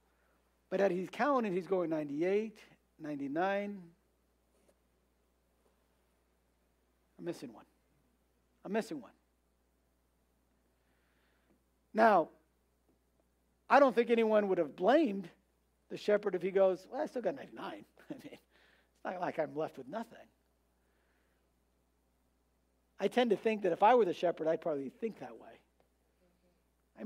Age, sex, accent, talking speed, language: 50-69, male, American, 120 wpm, English